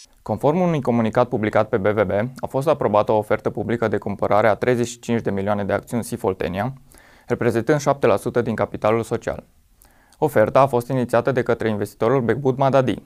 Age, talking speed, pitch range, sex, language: 20-39, 160 wpm, 105-130 Hz, male, Romanian